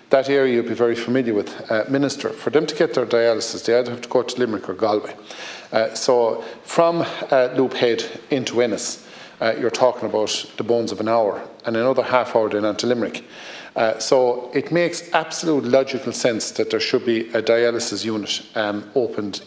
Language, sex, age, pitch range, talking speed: English, male, 50-69, 110-135 Hz, 195 wpm